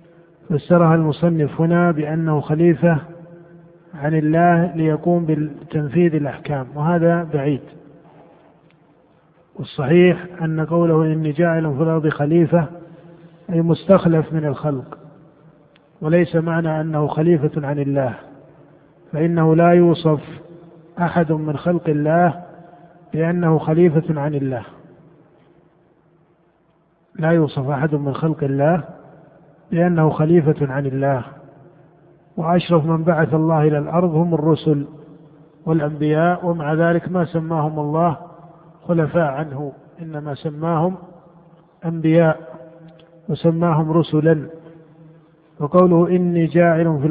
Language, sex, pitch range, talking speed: Arabic, male, 150-170 Hz, 95 wpm